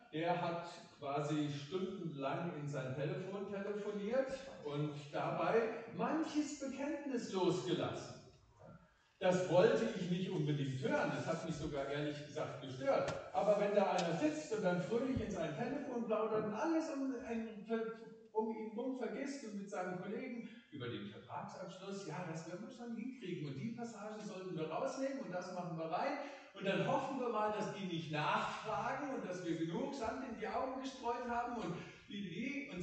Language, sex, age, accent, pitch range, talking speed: German, male, 50-69, German, 155-235 Hz, 165 wpm